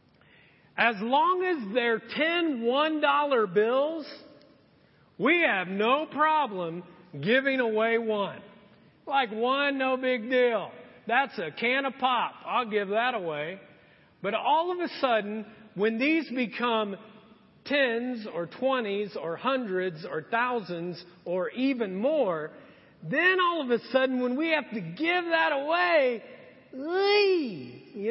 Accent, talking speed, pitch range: American, 125 wpm, 210-285 Hz